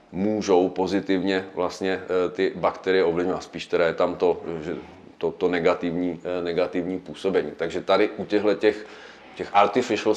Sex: male